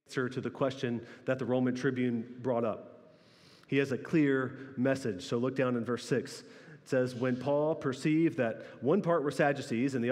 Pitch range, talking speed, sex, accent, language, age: 130-160 Hz, 195 wpm, male, American, English, 30-49